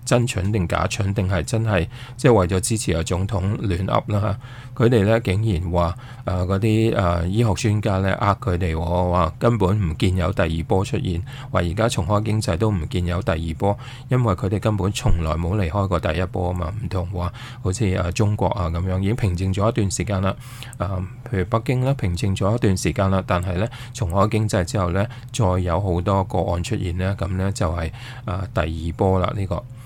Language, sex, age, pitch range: English, male, 20-39, 90-115 Hz